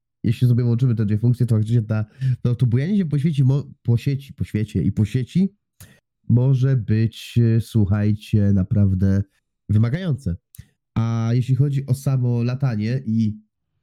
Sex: male